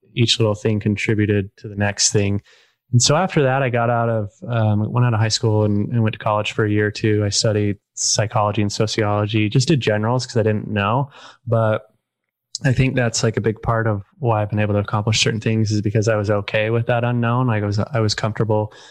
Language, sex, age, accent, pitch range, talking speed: English, male, 20-39, American, 105-120 Hz, 240 wpm